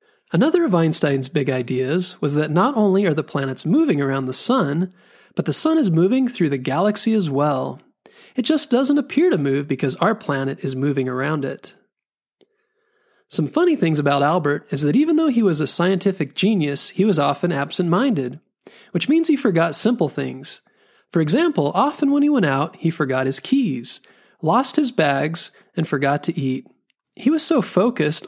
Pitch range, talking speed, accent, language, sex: 145-225 Hz, 180 wpm, American, English, male